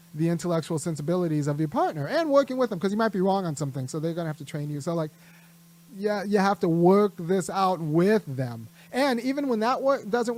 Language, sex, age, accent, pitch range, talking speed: English, male, 30-49, American, 170-205 Hz, 235 wpm